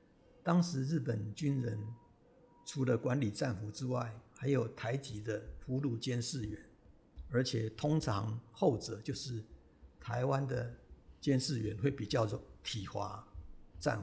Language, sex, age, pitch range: Chinese, male, 60-79, 110-135 Hz